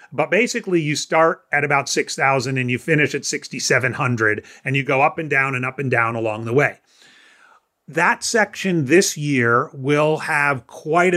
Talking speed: 170 wpm